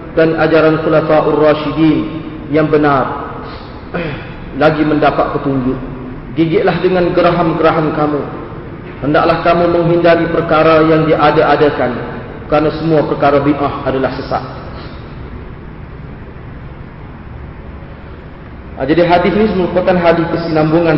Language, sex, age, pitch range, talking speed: Malay, male, 40-59, 135-160 Hz, 95 wpm